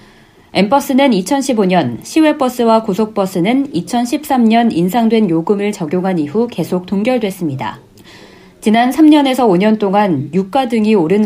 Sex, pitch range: female, 175-235 Hz